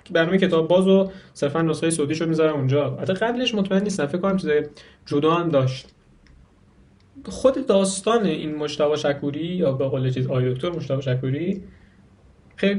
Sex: male